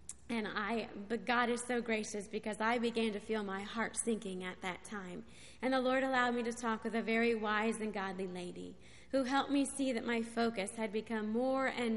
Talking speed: 215 wpm